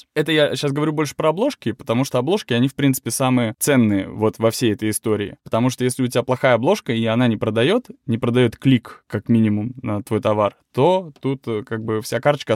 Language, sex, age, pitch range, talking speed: Russian, male, 20-39, 115-145 Hz, 215 wpm